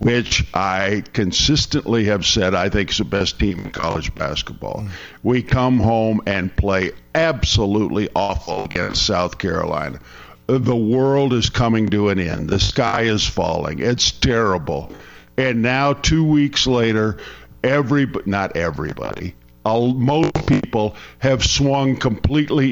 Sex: male